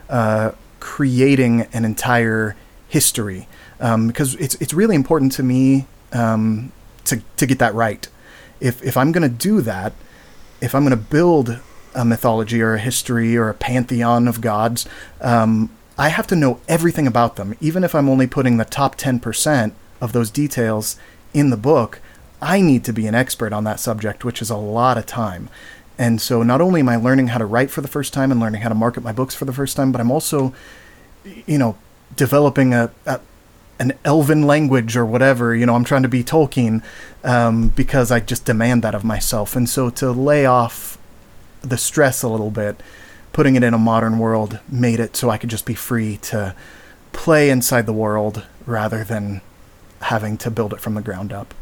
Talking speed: 200 wpm